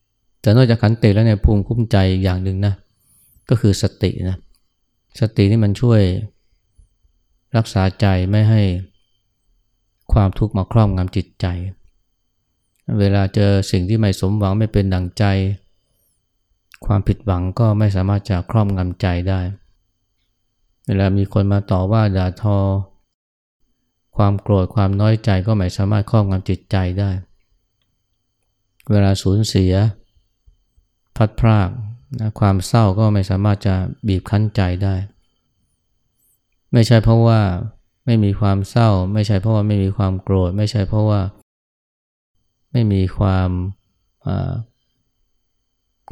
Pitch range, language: 95-110 Hz, Thai